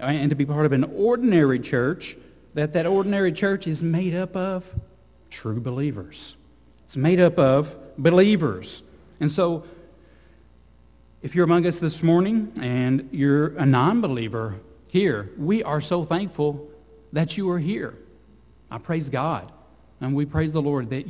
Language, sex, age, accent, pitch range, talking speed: English, male, 50-69, American, 110-160 Hz, 150 wpm